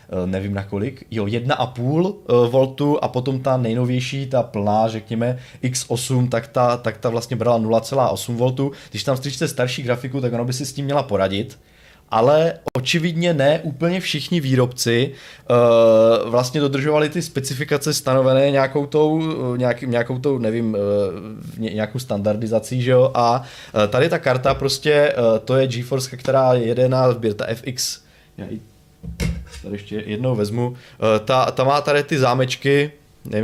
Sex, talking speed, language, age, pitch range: male, 140 wpm, Czech, 20-39, 115-135 Hz